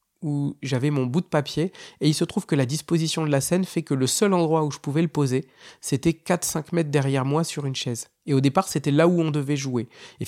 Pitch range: 135-170 Hz